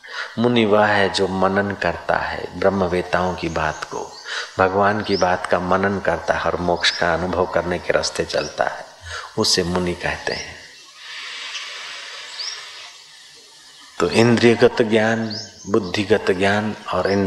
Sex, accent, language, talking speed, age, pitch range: male, native, Hindi, 130 wpm, 50-69, 95-115 Hz